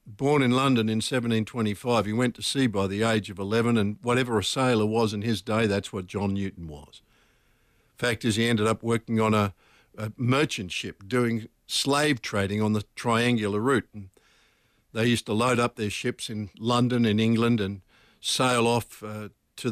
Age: 60-79